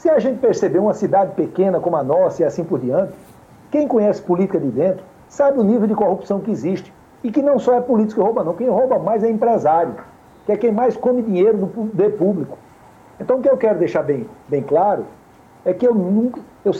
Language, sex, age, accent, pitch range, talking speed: Portuguese, male, 60-79, Brazilian, 190-250 Hz, 220 wpm